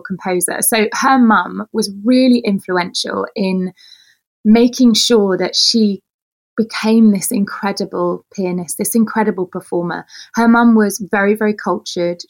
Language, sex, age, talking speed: English, female, 20-39, 120 wpm